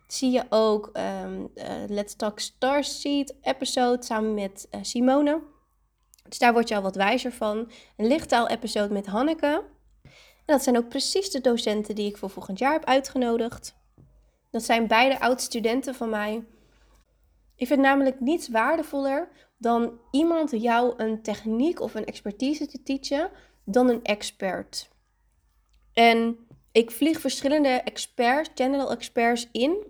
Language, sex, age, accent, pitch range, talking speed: Dutch, female, 20-39, Dutch, 220-270 Hz, 145 wpm